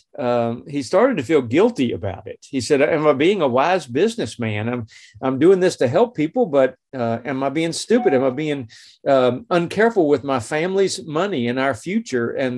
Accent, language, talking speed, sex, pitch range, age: American, English, 200 wpm, male, 120-165 Hz, 50-69